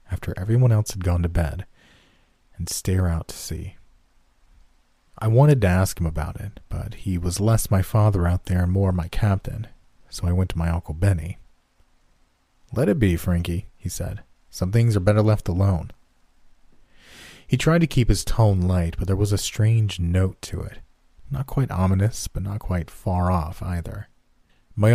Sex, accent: male, American